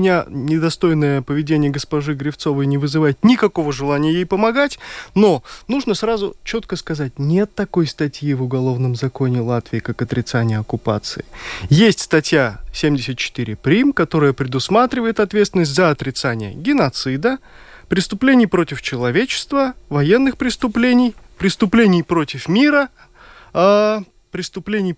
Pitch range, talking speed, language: 140-210 Hz, 110 wpm, Russian